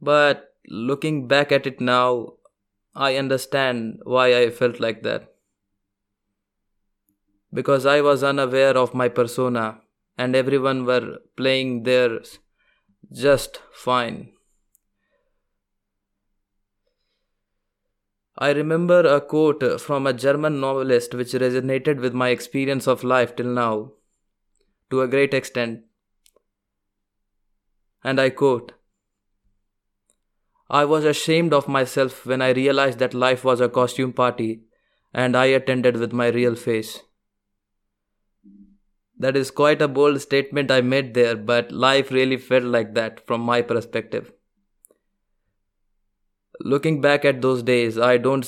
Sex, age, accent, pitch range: male, 20-39, Indian, 110-135 Hz